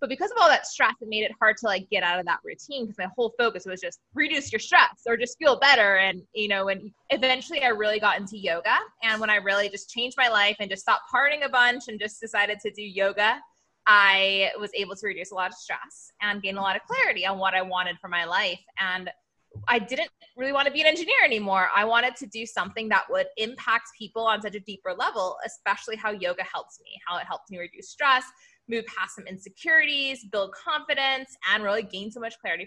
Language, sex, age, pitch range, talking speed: English, female, 20-39, 200-265 Hz, 235 wpm